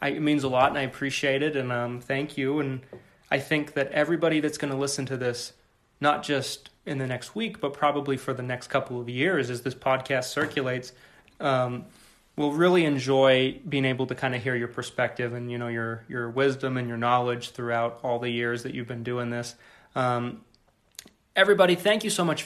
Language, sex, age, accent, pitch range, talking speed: English, male, 30-49, American, 125-145 Hz, 210 wpm